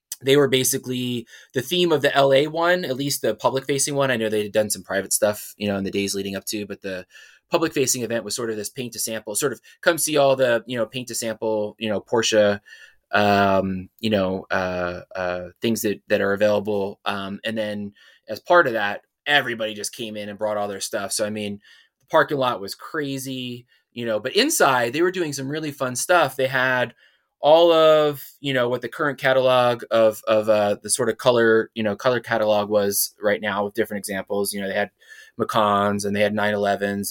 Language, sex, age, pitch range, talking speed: English, male, 20-39, 105-135 Hz, 225 wpm